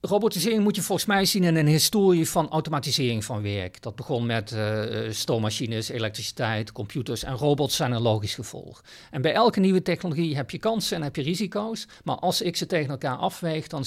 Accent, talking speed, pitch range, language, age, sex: Dutch, 200 wpm, 130-180 Hz, Dutch, 50-69, male